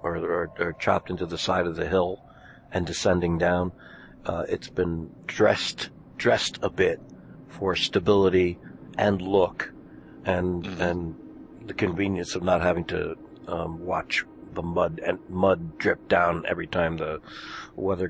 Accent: American